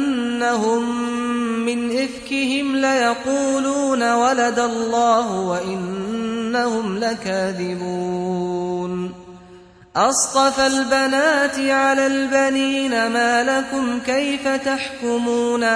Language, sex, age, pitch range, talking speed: Arabic, male, 30-49, 220-255 Hz, 60 wpm